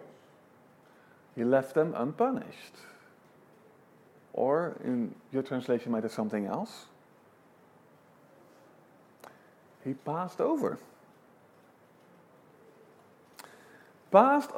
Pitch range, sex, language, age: 140-220 Hz, male, English, 50-69